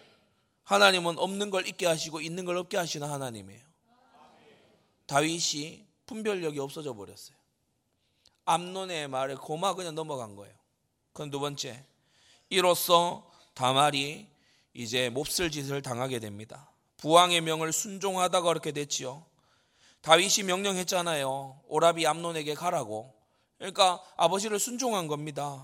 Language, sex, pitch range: Korean, male, 145-205 Hz